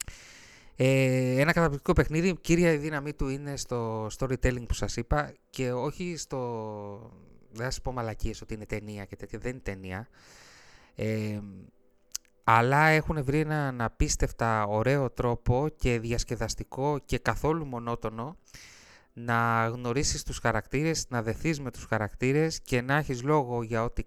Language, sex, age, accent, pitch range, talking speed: Greek, male, 20-39, native, 110-145 Hz, 140 wpm